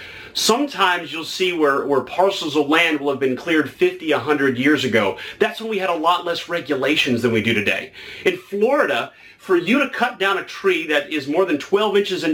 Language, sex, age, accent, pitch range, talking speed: English, male, 40-59, American, 145-235 Hz, 215 wpm